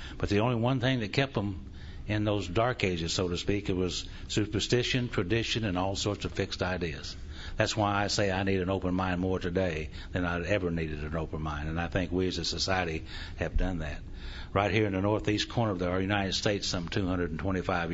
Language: English